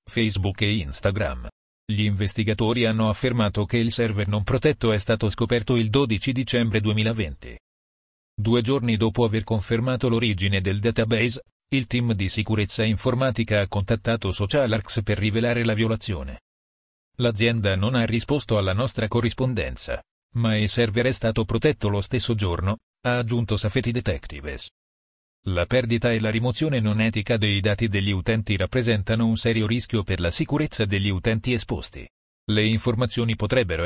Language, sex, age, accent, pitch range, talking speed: Italian, male, 40-59, native, 105-120 Hz, 145 wpm